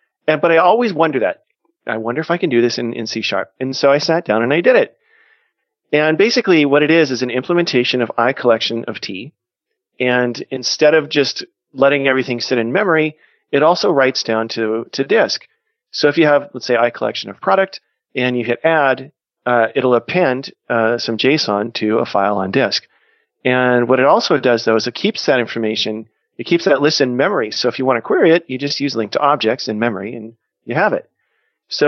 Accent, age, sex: American, 40-59, male